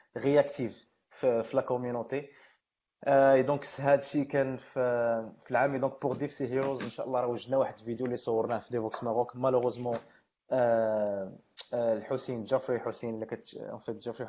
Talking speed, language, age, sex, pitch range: 145 wpm, Arabic, 20-39, male, 115-140 Hz